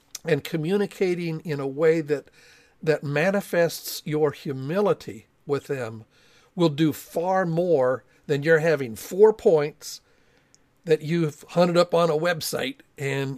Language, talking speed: English, 130 wpm